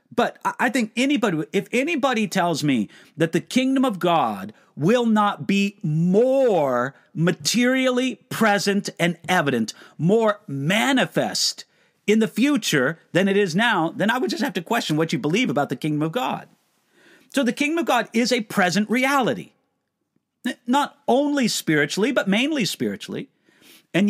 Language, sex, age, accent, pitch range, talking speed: English, male, 50-69, American, 150-220 Hz, 150 wpm